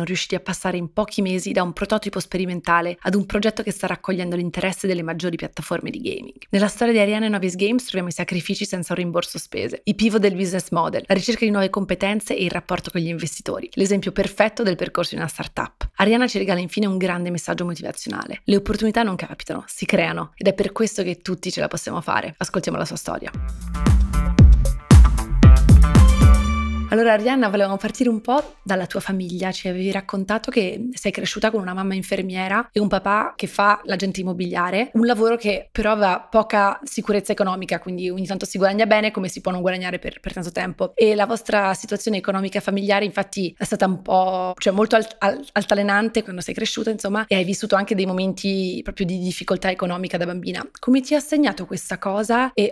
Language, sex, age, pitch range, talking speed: Italian, female, 20-39, 185-215 Hz, 200 wpm